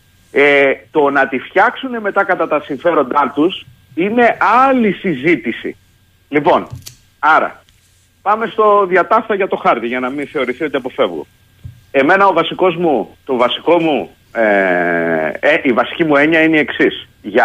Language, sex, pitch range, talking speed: Greek, male, 115-185 Hz, 150 wpm